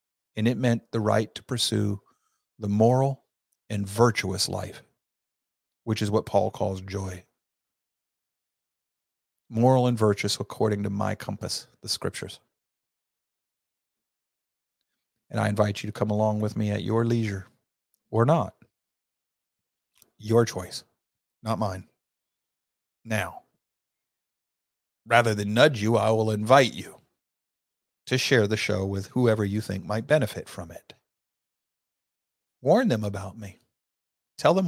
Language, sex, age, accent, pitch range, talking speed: English, male, 40-59, American, 100-120 Hz, 125 wpm